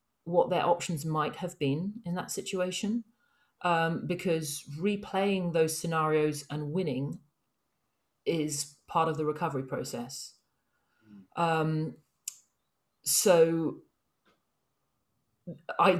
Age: 40-59